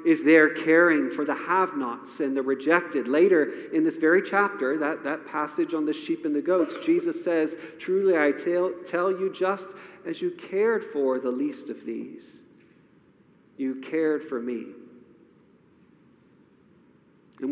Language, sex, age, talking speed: English, male, 40-59, 150 wpm